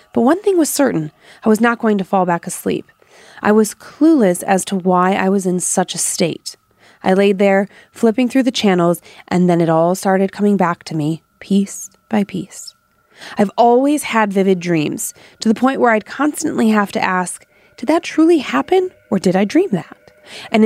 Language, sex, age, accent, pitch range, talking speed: English, female, 30-49, American, 175-230 Hz, 200 wpm